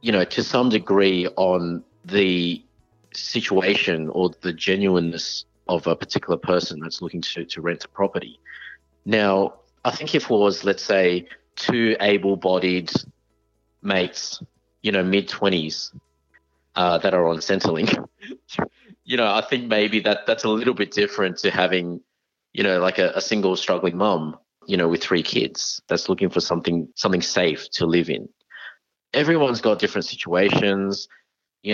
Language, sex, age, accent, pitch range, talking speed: English, male, 30-49, Australian, 85-100 Hz, 155 wpm